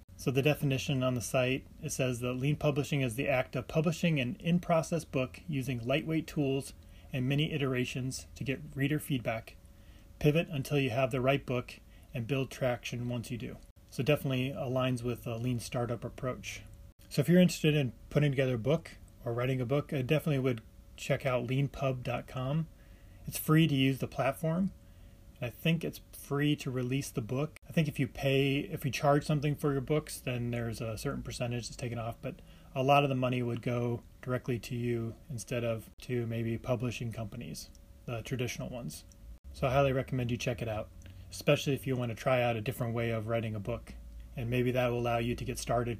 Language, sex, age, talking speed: English, male, 30-49, 200 wpm